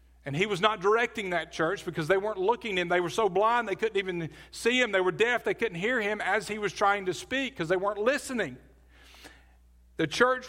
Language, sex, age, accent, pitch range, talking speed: English, male, 40-59, American, 135-200 Hz, 230 wpm